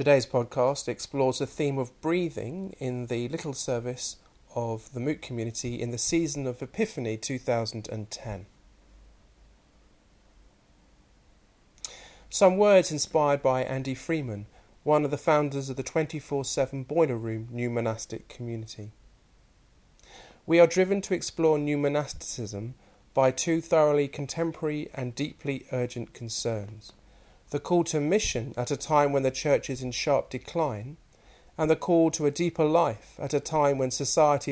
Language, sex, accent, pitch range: English, male, British, 120-150 Hz